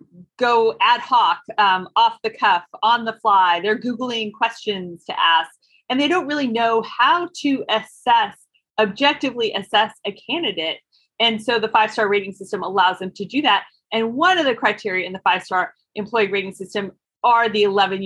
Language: English